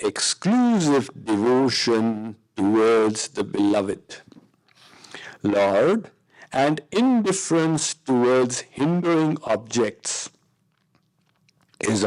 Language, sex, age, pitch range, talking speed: English, male, 50-69, 105-155 Hz, 60 wpm